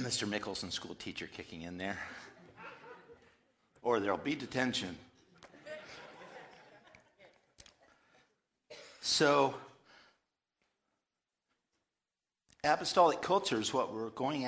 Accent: American